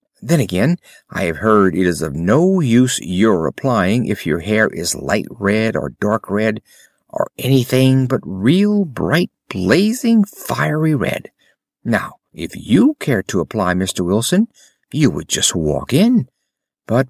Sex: male